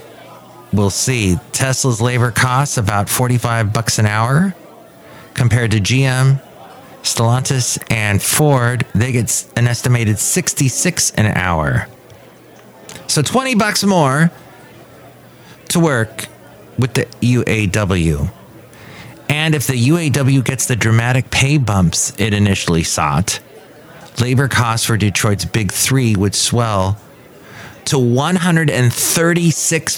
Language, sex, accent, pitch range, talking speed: English, male, American, 110-135 Hz, 110 wpm